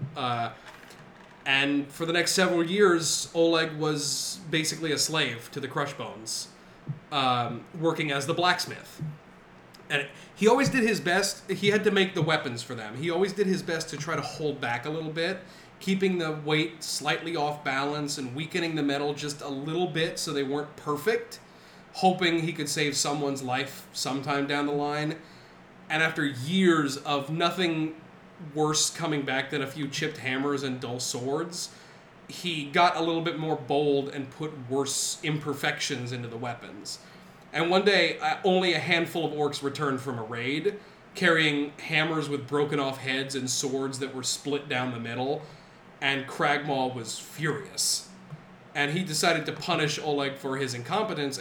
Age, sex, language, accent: 30-49, male, English, American